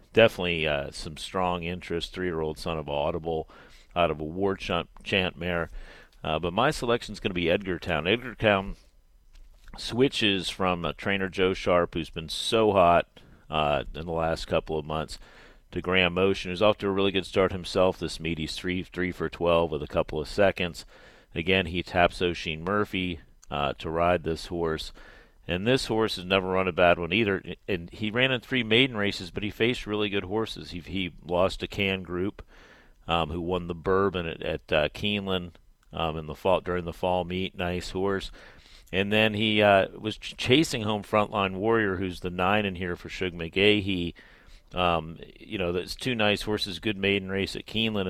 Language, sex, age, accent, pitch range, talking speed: English, male, 40-59, American, 85-105 Hz, 190 wpm